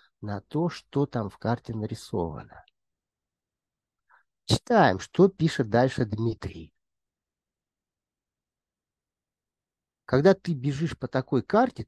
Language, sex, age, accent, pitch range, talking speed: Russian, male, 50-69, native, 105-145 Hz, 90 wpm